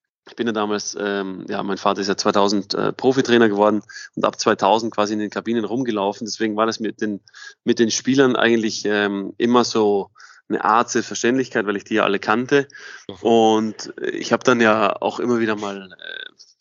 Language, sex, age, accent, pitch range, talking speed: German, male, 20-39, German, 100-120 Hz, 190 wpm